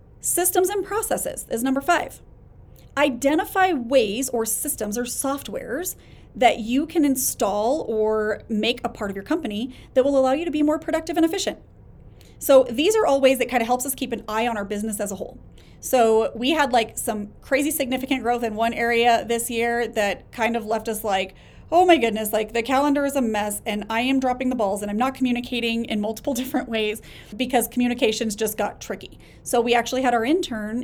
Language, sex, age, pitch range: English, female, 30-49, 215-270 Hz